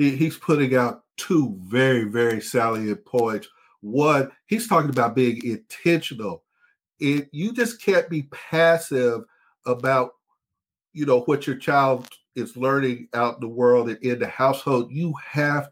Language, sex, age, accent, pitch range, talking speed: English, male, 50-69, American, 120-160 Hz, 140 wpm